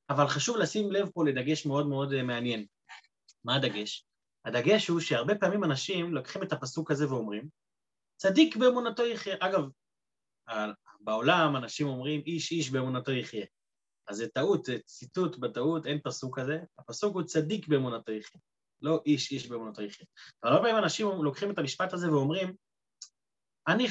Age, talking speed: 30-49, 155 wpm